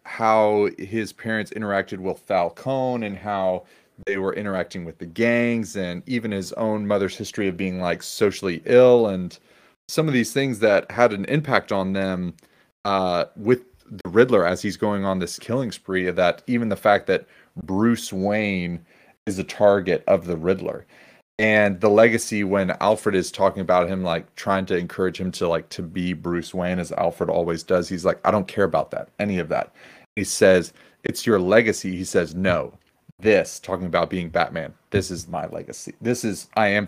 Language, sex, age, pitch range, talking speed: English, male, 30-49, 90-110 Hz, 190 wpm